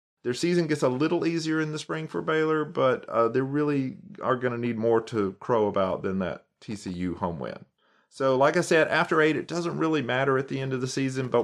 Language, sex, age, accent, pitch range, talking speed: English, male, 40-59, American, 110-140 Hz, 235 wpm